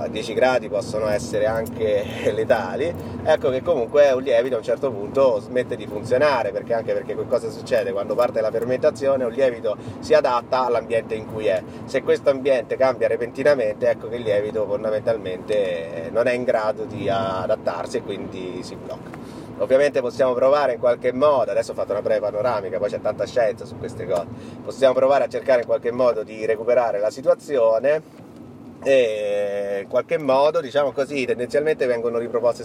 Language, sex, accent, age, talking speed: Italian, male, native, 30-49, 175 wpm